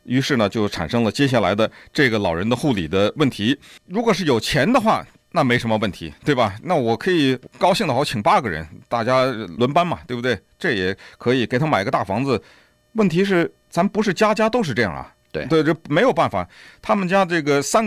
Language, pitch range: Chinese, 125-195 Hz